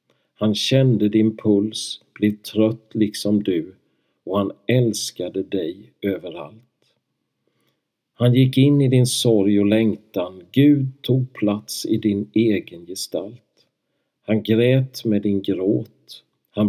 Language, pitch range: Swedish, 100-125 Hz